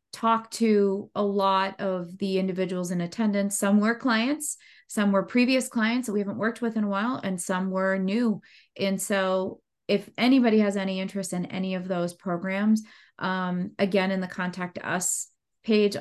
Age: 30-49